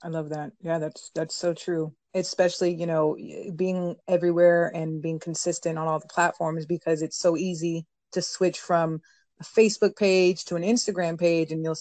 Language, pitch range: English, 160-190 Hz